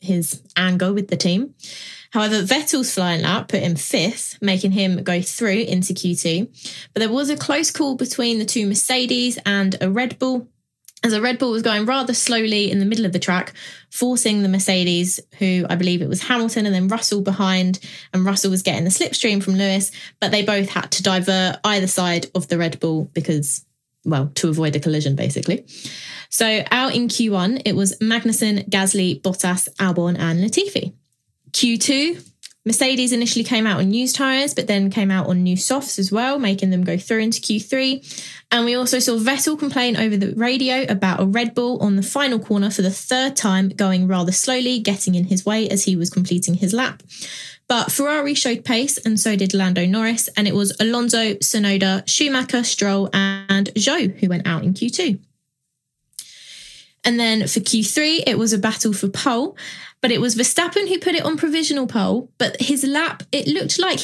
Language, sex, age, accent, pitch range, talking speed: English, female, 20-39, British, 190-250 Hz, 190 wpm